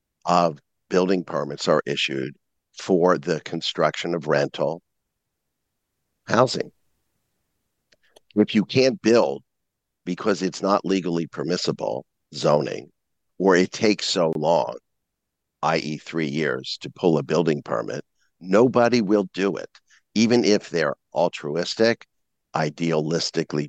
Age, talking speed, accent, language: 50-69, 110 wpm, American, English